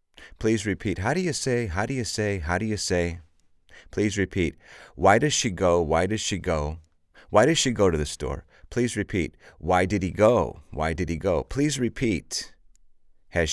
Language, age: English, 30-49